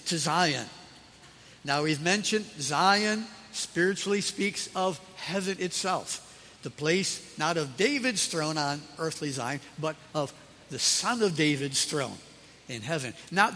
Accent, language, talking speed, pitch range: American, English, 130 wpm, 150-225 Hz